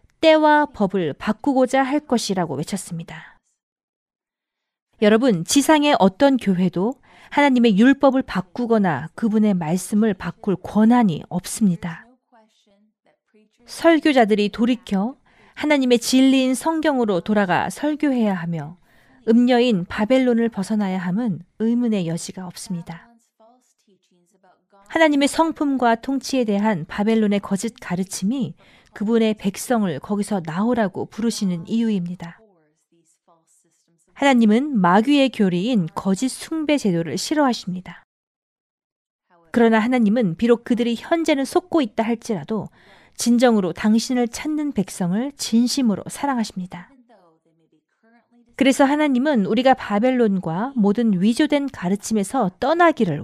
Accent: native